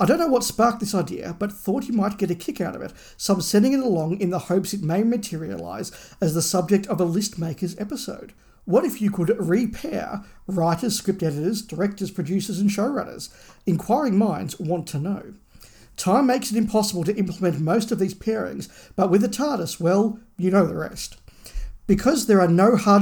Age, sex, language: 50-69, male, English